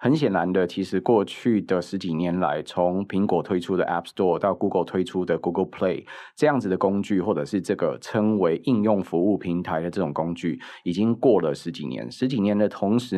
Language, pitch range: Chinese, 90-105 Hz